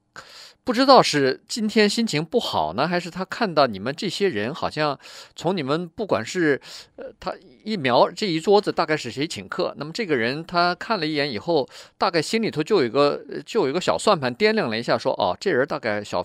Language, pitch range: Chinese, 145-220 Hz